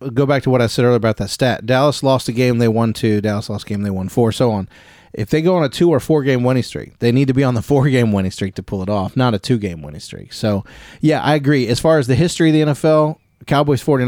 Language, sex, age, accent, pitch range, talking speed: English, male, 30-49, American, 115-145 Hz, 300 wpm